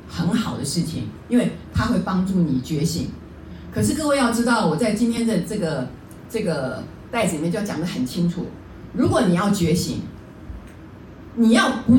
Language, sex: Chinese, female